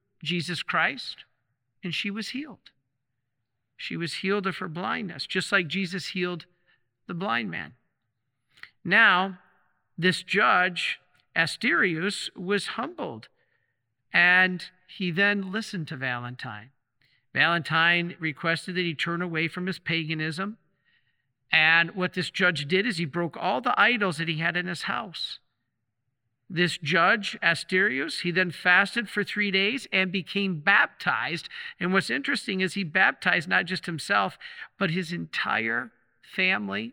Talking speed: 135 wpm